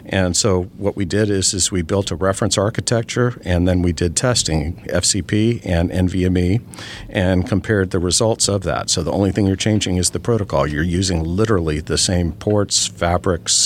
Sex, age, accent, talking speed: male, 50-69, American, 185 wpm